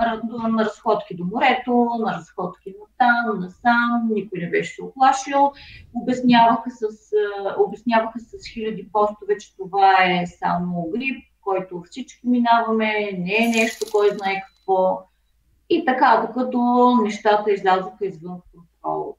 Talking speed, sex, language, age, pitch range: 120 wpm, female, Bulgarian, 30-49, 185-225 Hz